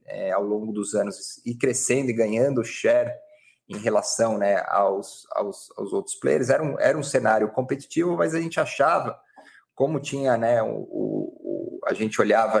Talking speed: 150 wpm